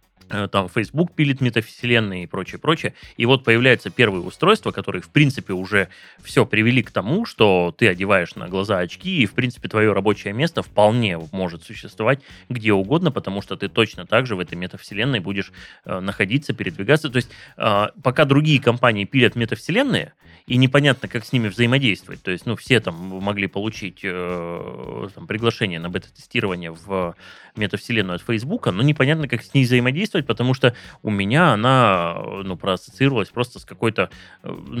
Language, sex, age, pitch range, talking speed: Russian, male, 20-39, 95-130 Hz, 160 wpm